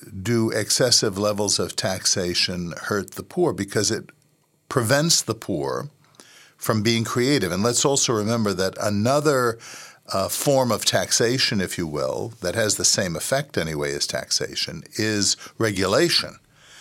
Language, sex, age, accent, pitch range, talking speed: English, male, 60-79, American, 105-150 Hz, 140 wpm